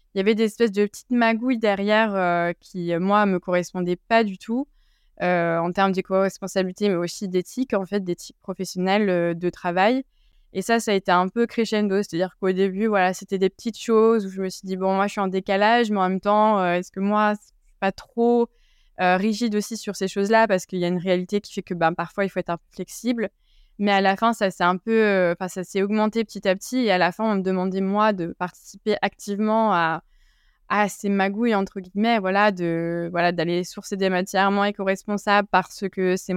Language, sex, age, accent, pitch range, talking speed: French, female, 20-39, French, 185-210 Hz, 230 wpm